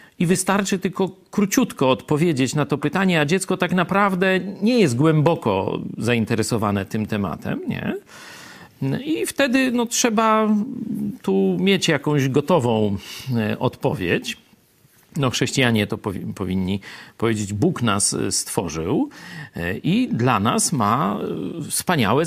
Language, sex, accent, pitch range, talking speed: Polish, male, native, 115-195 Hz, 115 wpm